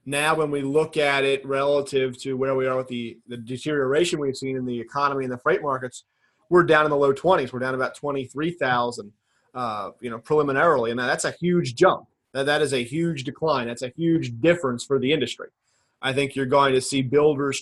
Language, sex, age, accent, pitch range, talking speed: English, male, 30-49, American, 130-155 Hz, 210 wpm